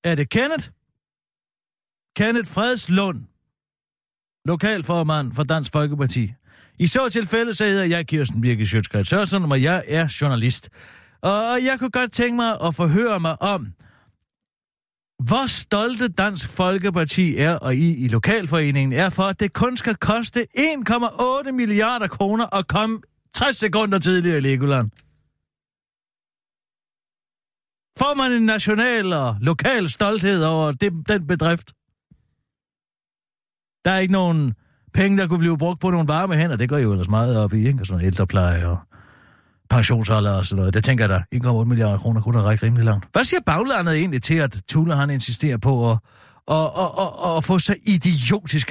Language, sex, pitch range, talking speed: Danish, male, 125-205 Hz, 160 wpm